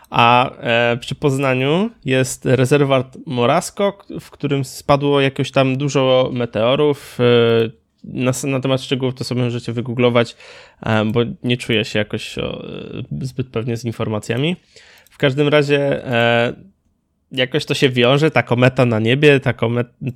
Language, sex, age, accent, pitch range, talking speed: Polish, male, 20-39, native, 120-140 Hz, 145 wpm